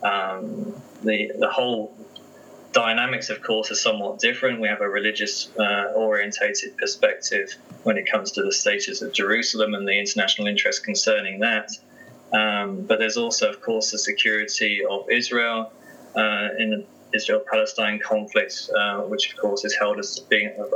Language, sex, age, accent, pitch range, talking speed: English, male, 20-39, British, 105-130 Hz, 155 wpm